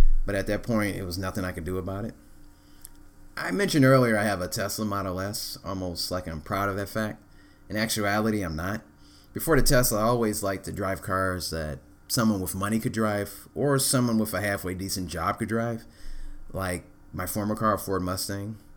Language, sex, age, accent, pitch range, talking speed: English, male, 30-49, American, 80-110 Hz, 200 wpm